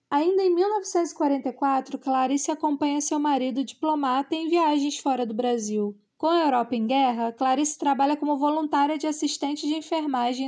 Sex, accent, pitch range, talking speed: female, Brazilian, 255-300 Hz, 150 wpm